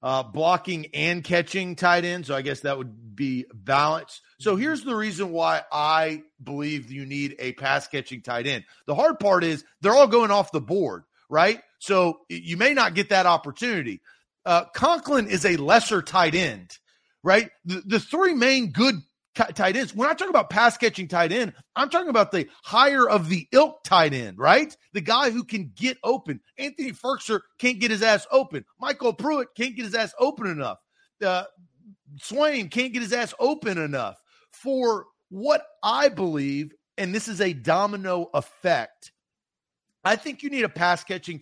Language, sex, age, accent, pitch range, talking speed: English, male, 40-59, American, 150-240 Hz, 180 wpm